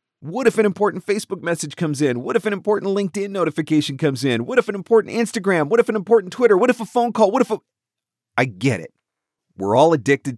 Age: 40-59